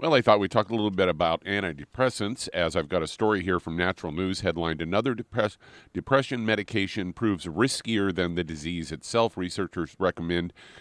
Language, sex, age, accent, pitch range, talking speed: English, male, 50-69, American, 80-100 Hz, 180 wpm